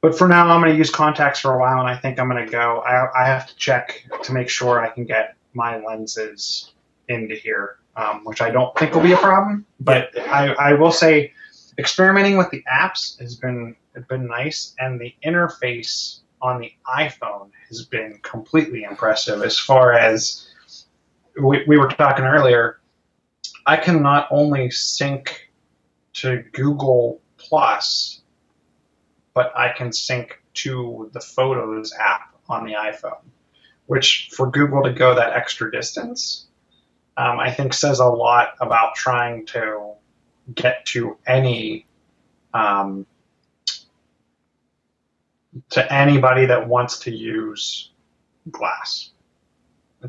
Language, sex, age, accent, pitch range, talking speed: English, male, 30-49, American, 115-145 Hz, 145 wpm